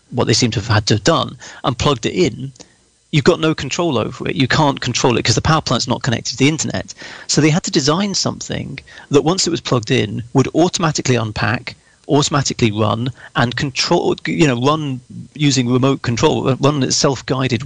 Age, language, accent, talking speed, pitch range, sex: 40-59, English, British, 205 wpm, 115-140 Hz, male